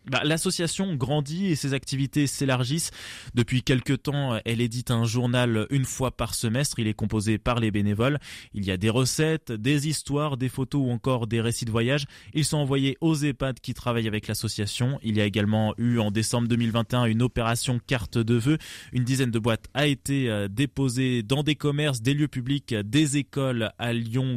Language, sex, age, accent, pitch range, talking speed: French, male, 20-39, French, 110-140 Hz, 190 wpm